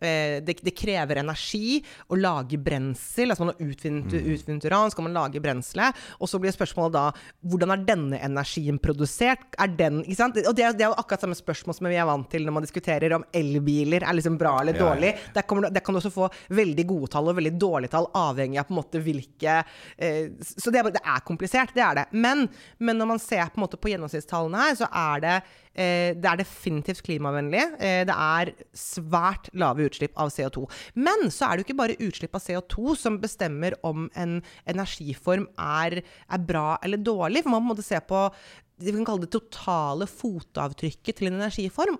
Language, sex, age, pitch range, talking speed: English, female, 30-49, 155-210 Hz, 210 wpm